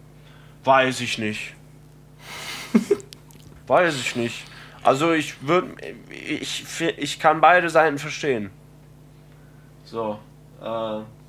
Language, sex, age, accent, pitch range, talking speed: German, male, 20-39, German, 110-145 Hz, 90 wpm